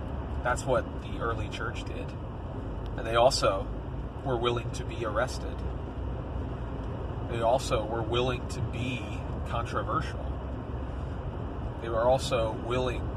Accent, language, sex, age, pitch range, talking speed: American, English, male, 30-49, 110-130 Hz, 115 wpm